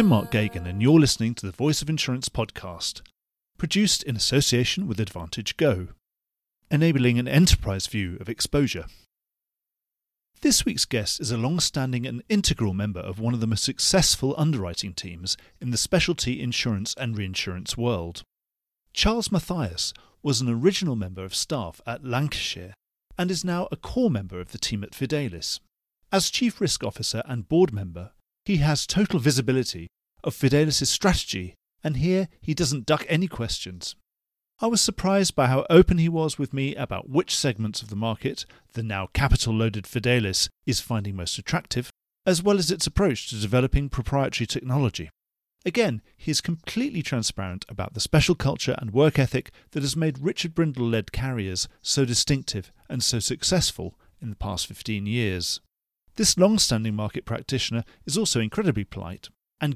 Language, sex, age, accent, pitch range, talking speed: English, male, 40-59, British, 100-150 Hz, 160 wpm